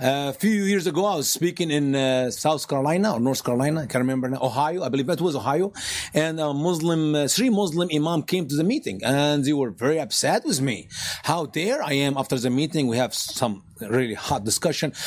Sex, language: male, English